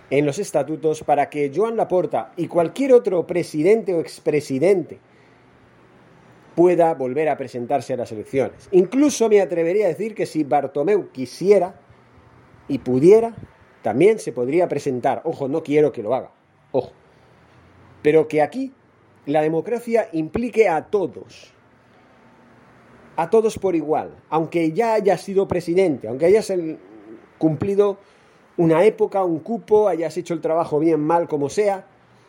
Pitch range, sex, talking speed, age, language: 145-210 Hz, male, 140 wpm, 40-59, Spanish